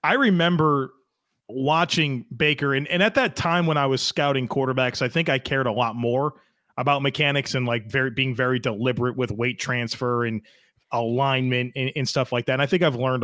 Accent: American